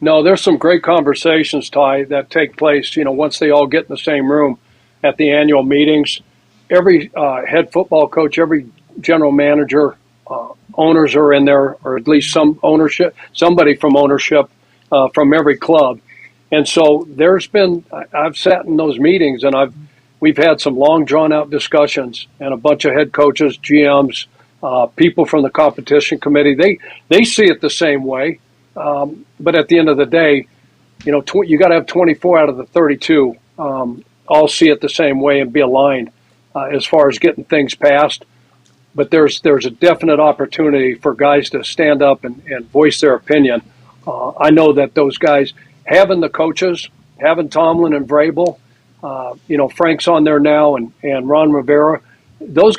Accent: American